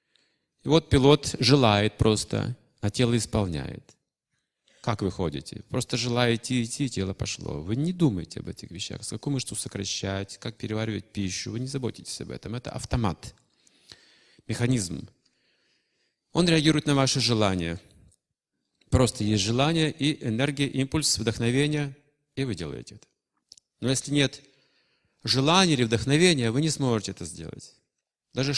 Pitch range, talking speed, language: 90-130 Hz, 140 wpm, Russian